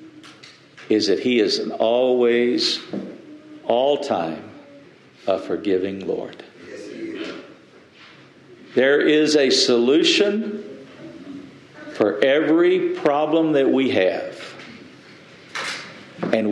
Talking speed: 80 wpm